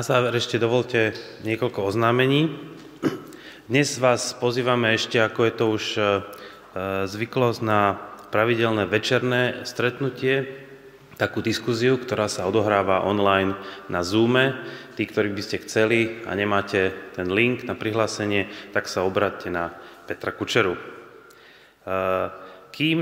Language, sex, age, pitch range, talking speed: Slovak, male, 30-49, 95-120 Hz, 115 wpm